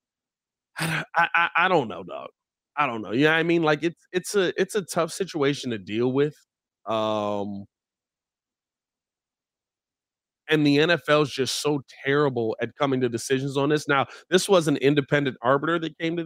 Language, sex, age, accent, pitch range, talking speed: English, male, 20-39, American, 125-175 Hz, 175 wpm